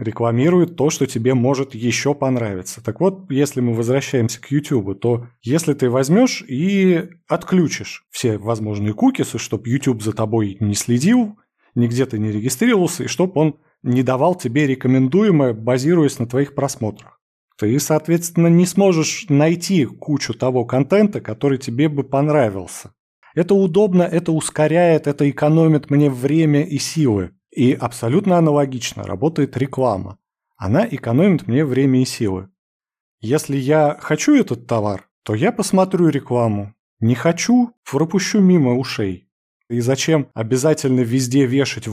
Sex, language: male, Russian